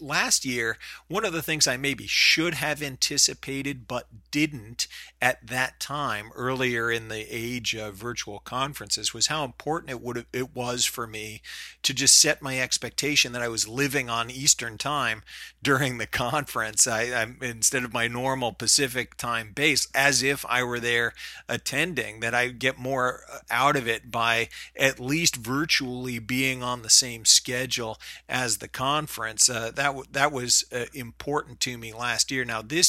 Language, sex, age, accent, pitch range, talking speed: English, male, 40-59, American, 115-140 Hz, 170 wpm